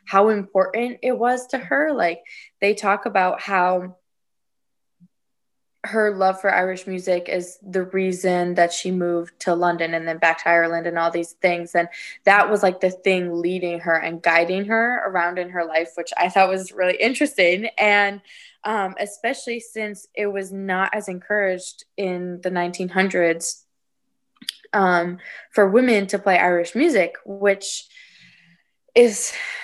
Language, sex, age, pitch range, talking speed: English, female, 20-39, 180-215 Hz, 150 wpm